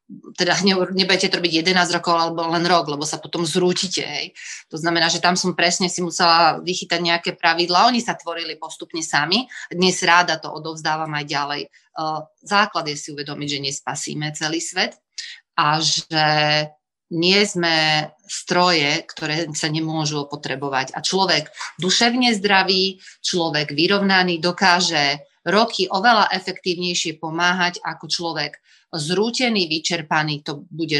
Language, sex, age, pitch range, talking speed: Slovak, female, 30-49, 155-180 Hz, 135 wpm